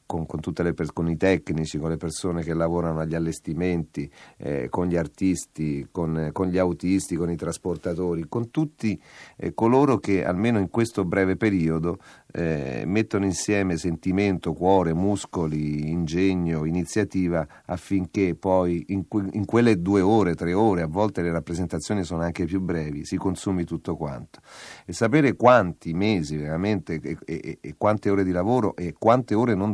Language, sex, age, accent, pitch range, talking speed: Italian, male, 40-59, native, 80-100 Hz, 160 wpm